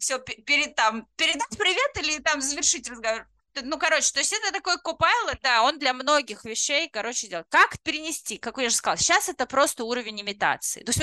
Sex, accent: female, native